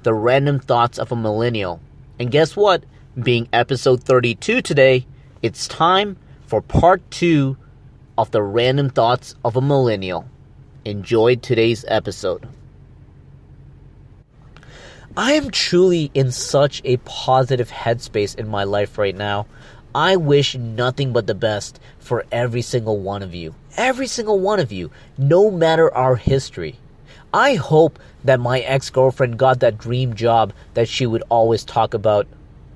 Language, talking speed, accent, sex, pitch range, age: English, 140 wpm, American, male, 115-140 Hz, 30-49